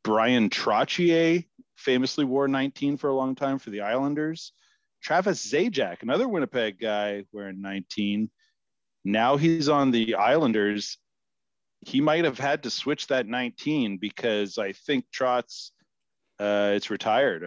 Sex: male